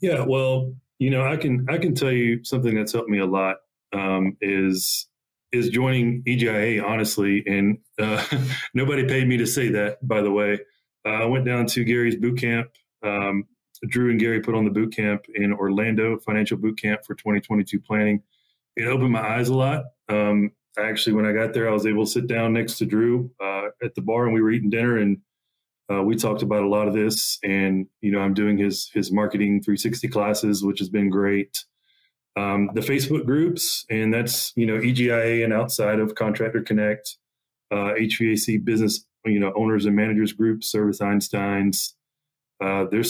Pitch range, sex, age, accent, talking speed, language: 105-120 Hz, male, 30-49, American, 190 wpm, English